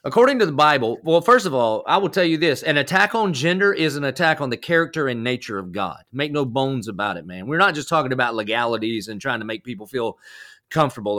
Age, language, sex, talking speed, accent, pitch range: 40-59, English, male, 245 wpm, American, 125-160 Hz